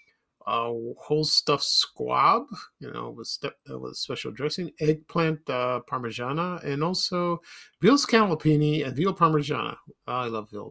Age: 50-69